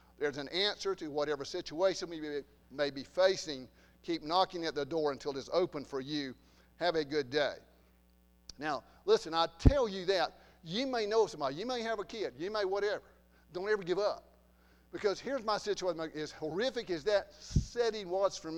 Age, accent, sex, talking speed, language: 50-69, American, male, 185 wpm, English